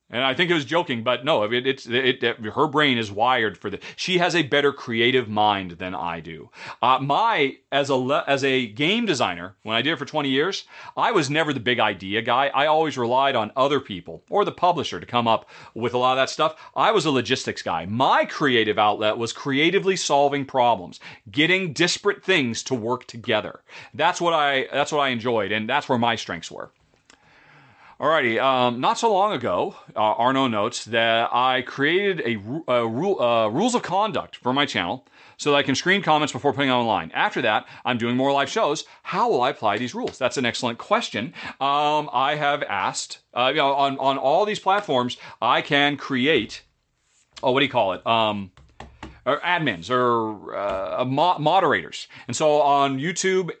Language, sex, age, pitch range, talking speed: English, male, 40-59, 120-155 Hz, 205 wpm